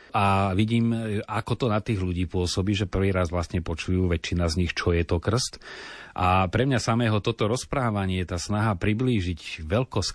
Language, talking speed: Slovak, 185 wpm